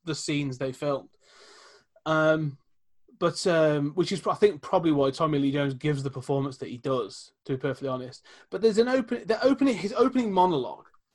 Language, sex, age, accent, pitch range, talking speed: English, male, 30-49, British, 140-195 Hz, 190 wpm